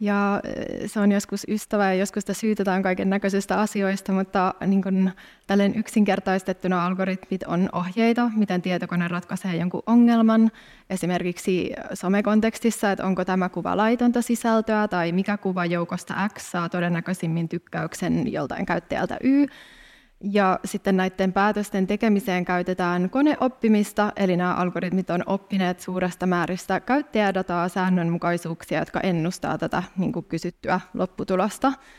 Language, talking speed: Finnish, 125 wpm